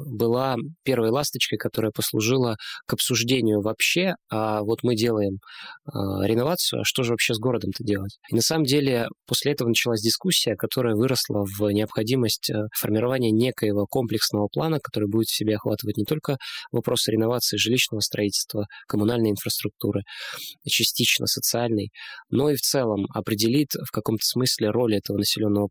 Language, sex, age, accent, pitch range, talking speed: Russian, male, 20-39, native, 105-125 Hz, 145 wpm